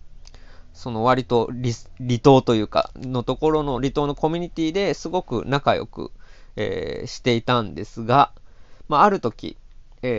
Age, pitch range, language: 20-39, 115-150 Hz, Japanese